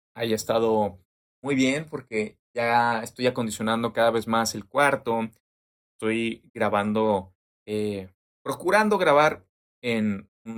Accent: Mexican